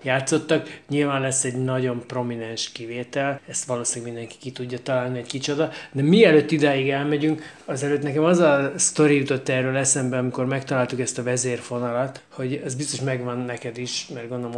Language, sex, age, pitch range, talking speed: Hungarian, male, 20-39, 125-145 Hz, 165 wpm